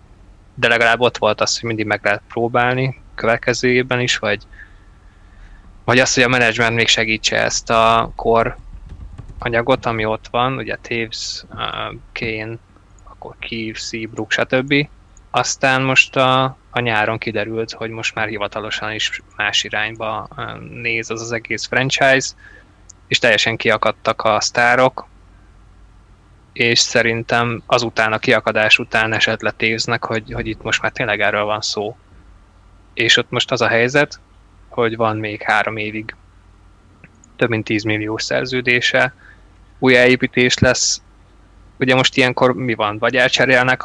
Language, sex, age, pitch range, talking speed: Hungarian, male, 20-39, 105-120 Hz, 140 wpm